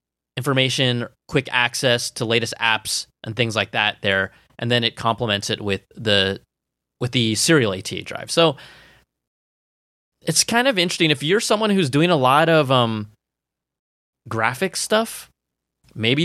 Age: 20-39